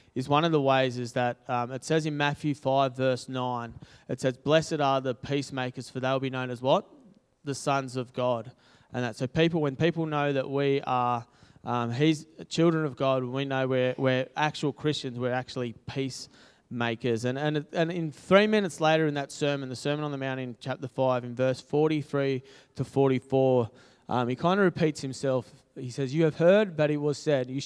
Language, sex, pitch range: English, male, 125-145 Hz